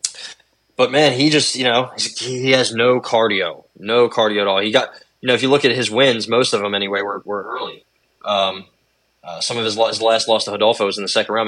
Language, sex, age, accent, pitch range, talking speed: English, male, 20-39, American, 105-130 Hz, 245 wpm